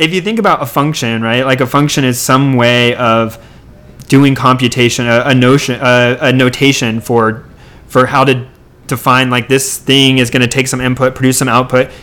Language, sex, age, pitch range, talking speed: English, male, 20-39, 120-135 Hz, 195 wpm